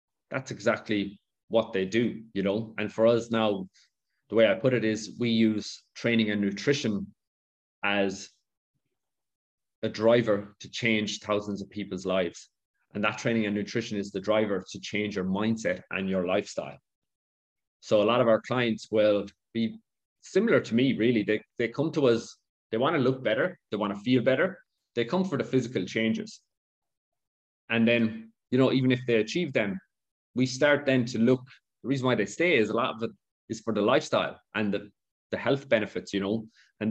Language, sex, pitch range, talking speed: English, male, 100-120 Hz, 185 wpm